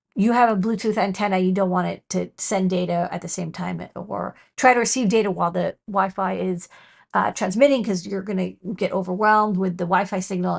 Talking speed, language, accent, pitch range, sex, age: 210 wpm, English, American, 185-225 Hz, female, 40-59